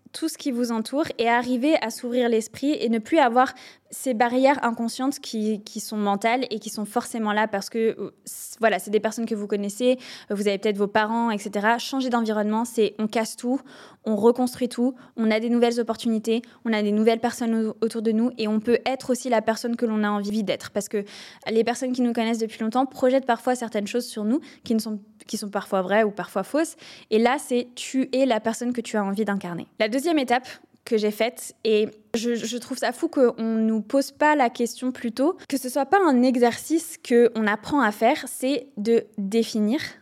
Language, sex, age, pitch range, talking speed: French, female, 20-39, 215-255 Hz, 220 wpm